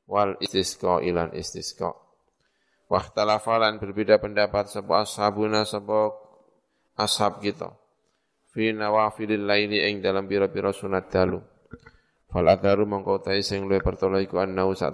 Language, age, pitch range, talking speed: Indonesian, 20-39, 95-105 Hz, 115 wpm